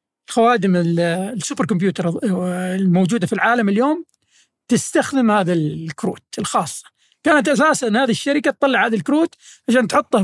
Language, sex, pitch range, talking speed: Arabic, male, 200-260 Hz, 115 wpm